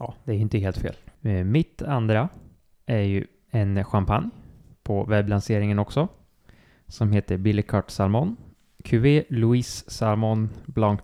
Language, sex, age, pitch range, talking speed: Swedish, male, 20-39, 95-110 Hz, 130 wpm